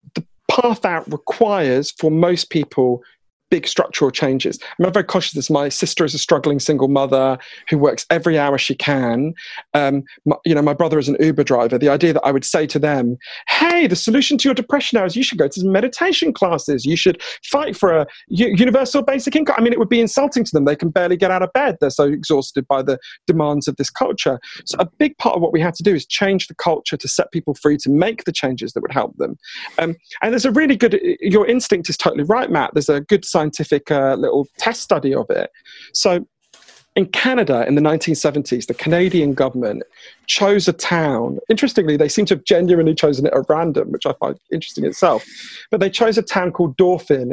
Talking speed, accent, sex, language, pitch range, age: 225 wpm, British, male, English, 145-210 Hz, 40-59